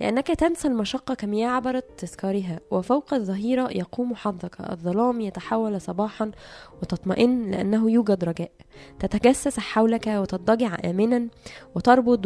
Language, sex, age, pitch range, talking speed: Arabic, female, 10-29, 195-250 Hz, 110 wpm